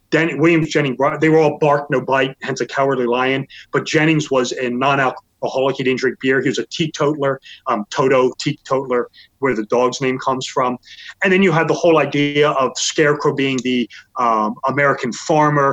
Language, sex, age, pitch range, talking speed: English, male, 30-49, 130-155 Hz, 185 wpm